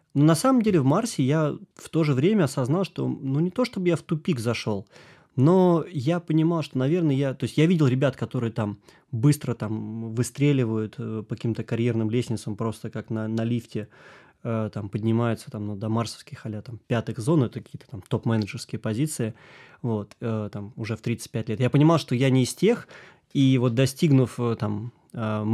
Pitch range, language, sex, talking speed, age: 115-150 Hz, Russian, male, 190 wpm, 20-39